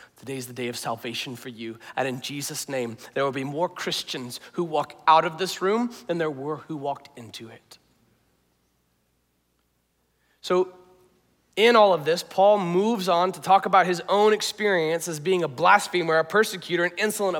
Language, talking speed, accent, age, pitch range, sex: English, 180 wpm, American, 30-49, 155-200 Hz, male